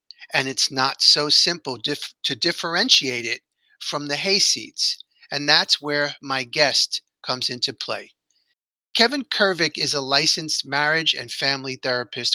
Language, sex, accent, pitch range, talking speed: English, male, American, 140-195 Hz, 135 wpm